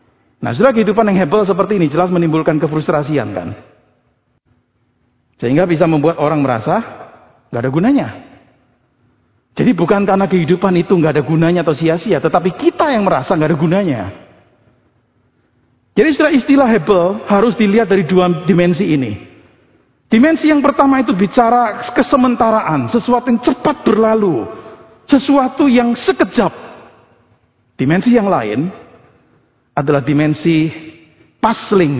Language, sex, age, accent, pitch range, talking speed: Indonesian, male, 50-69, native, 135-210 Hz, 120 wpm